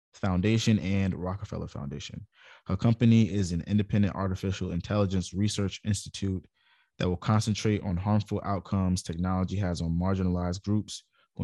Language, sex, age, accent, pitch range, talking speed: English, male, 20-39, American, 90-100 Hz, 130 wpm